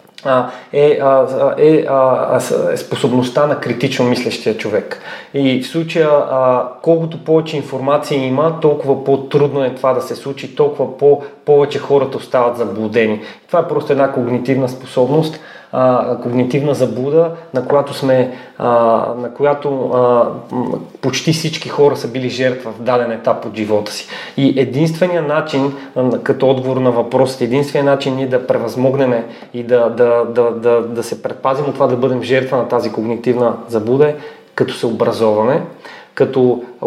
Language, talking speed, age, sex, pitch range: Bulgarian, 145 wpm, 30-49, male, 125-145 Hz